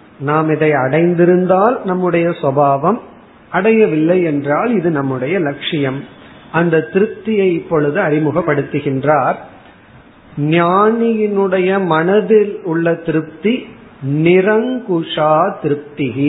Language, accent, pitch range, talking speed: Tamil, native, 150-190 Hz, 70 wpm